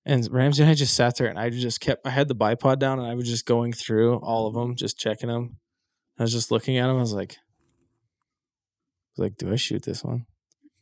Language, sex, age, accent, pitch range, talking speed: English, male, 20-39, American, 110-135 Hz, 250 wpm